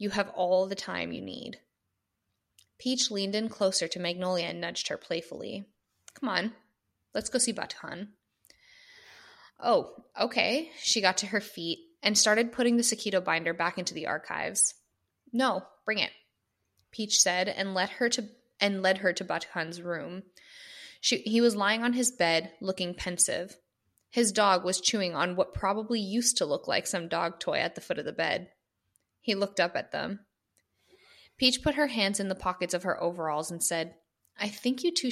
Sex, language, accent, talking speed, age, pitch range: female, English, American, 180 wpm, 20-39, 170-215 Hz